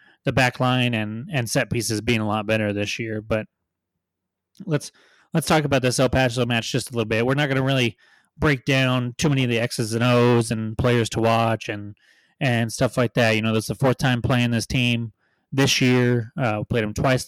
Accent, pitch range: American, 110-130 Hz